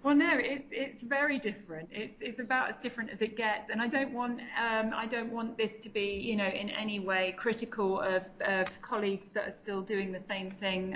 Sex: female